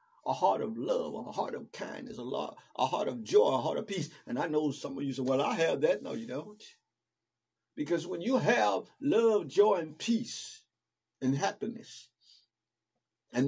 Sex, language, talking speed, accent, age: male, English, 190 wpm, American, 50-69